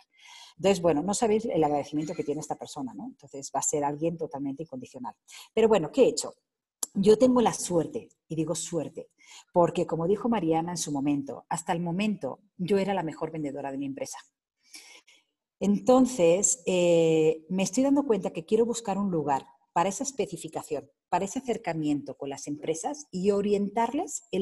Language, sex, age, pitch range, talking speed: Spanish, female, 40-59, 160-225 Hz, 175 wpm